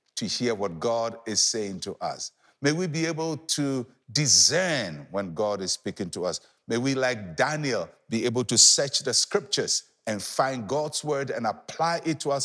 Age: 60-79